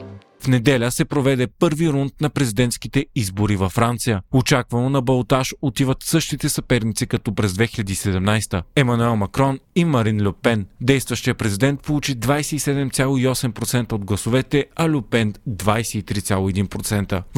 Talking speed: 115 wpm